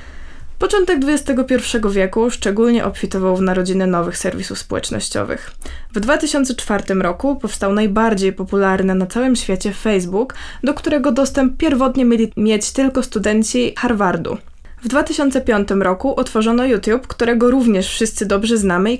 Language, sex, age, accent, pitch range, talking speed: Polish, female, 20-39, native, 200-255 Hz, 125 wpm